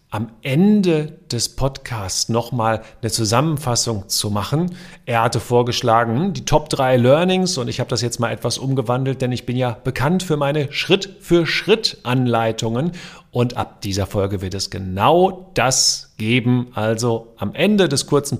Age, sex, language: 40-59, male, German